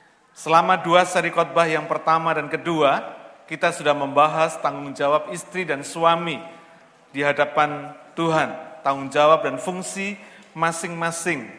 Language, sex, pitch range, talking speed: Malay, male, 145-175 Hz, 125 wpm